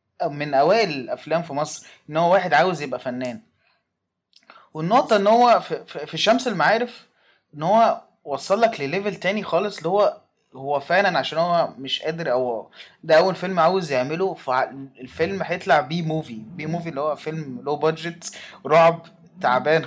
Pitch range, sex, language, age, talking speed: 140-195 Hz, male, Arabic, 20-39, 155 wpm